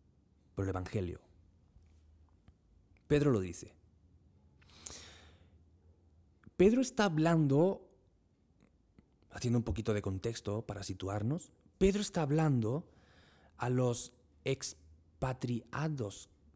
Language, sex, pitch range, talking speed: Spanish, male, 85-120 Hz, 80 wpm